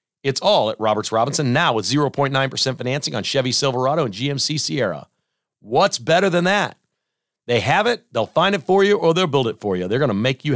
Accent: American